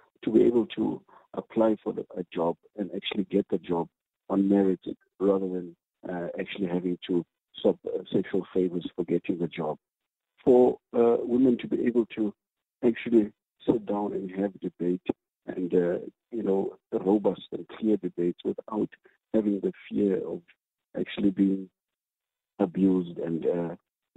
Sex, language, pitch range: male, English, 85-105 Hz